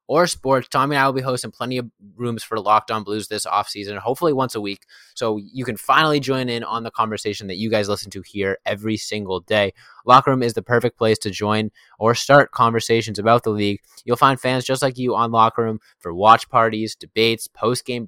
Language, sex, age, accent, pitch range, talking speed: English, male, 20-39, American, 105-125 Hz, 220 wpm